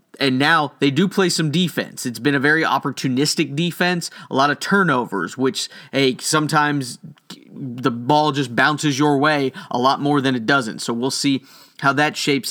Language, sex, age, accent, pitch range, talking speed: English, male, 40-59, American, 135-165 Hz, 175 wpm